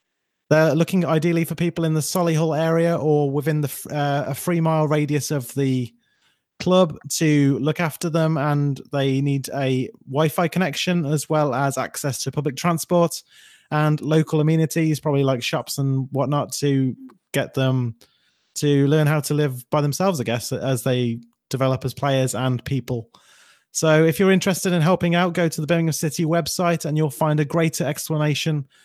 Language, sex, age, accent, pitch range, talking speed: English, male, 20-39, British, 145-170 Hz, 165 wpm